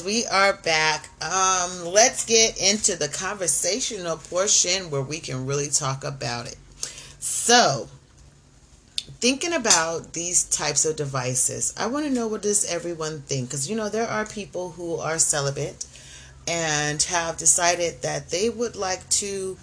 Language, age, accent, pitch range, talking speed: English, 30-49, American, 140-195 Hz, 150 wpm